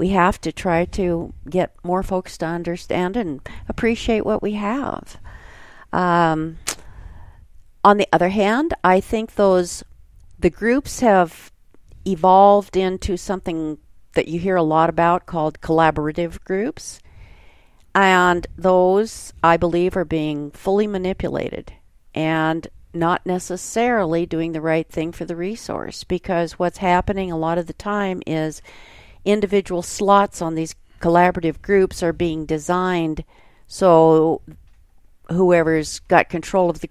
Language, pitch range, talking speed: English, 155-190 Hz, 130 wpm